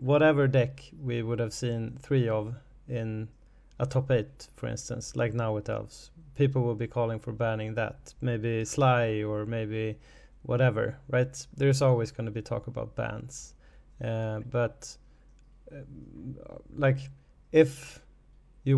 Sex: male